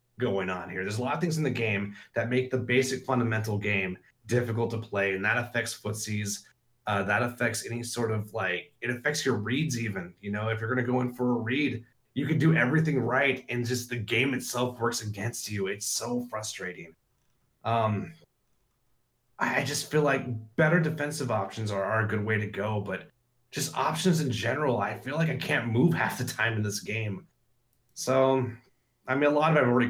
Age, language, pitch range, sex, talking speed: 30-49, English, 110-130 Hz, male, 205 wpm